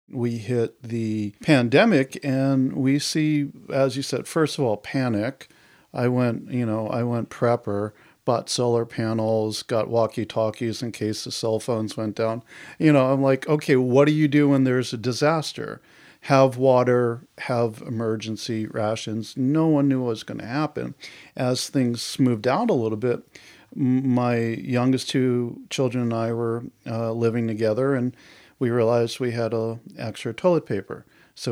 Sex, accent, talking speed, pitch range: male, American, 165 wpm, 110-135 Hz